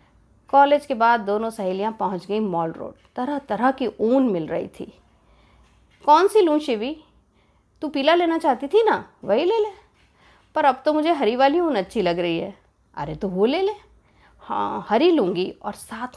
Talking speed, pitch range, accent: 185 wpm, 205-295 Hz, native